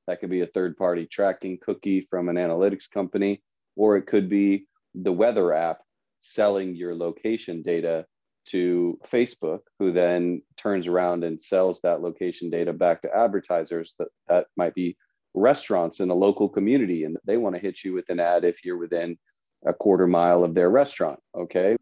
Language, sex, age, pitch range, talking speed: English, male, 30-49, 90-105 Hz, 175 wpm